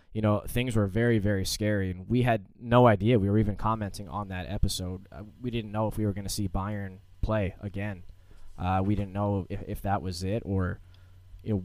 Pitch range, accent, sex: 95-115 Hz, American, male